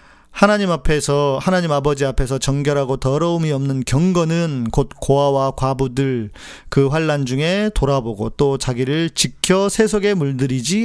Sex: male